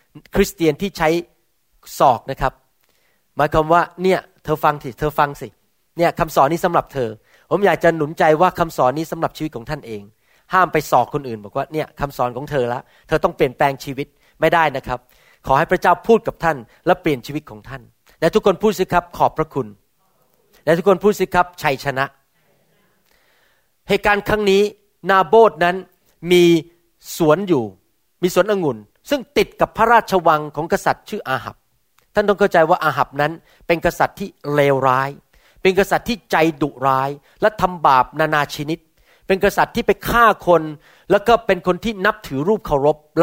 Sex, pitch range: male, 145-195 Hz